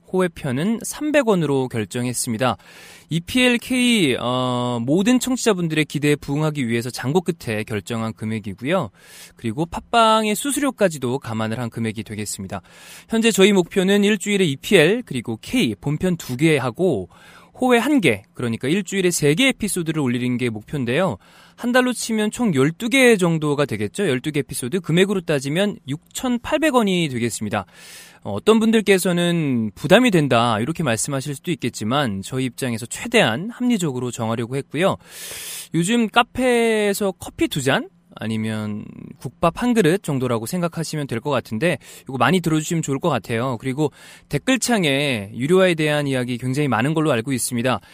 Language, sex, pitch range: Korean, male, 125-195 Hz